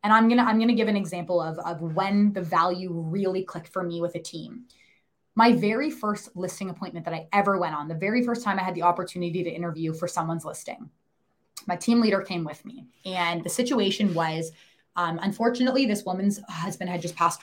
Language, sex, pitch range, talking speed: English, female, 170-205 Hz, 215 wpm